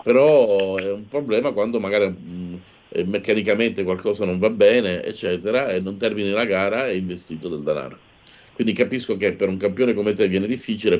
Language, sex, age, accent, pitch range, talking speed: Italian, male, 50-69, native, 90-115 Hz, 175 wpm